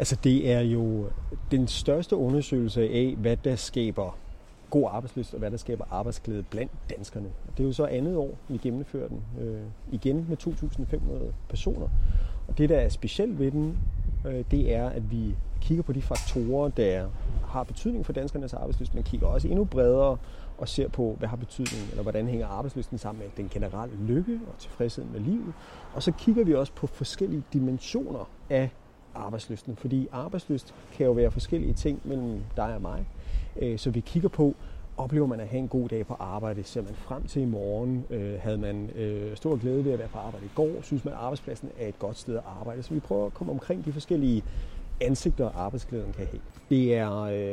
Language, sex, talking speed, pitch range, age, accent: Danish, male, 195 wpm, 105-135 Hz, 30-49, native